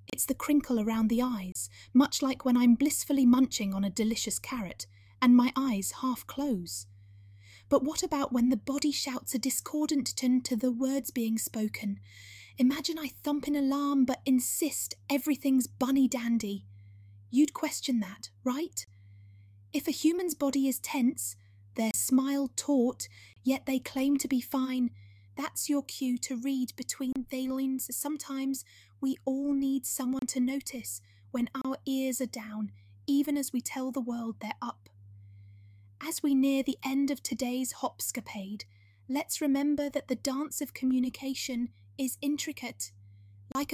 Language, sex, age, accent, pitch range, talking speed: English, female, 30-49, British, 220-275 Hz, 150 wpm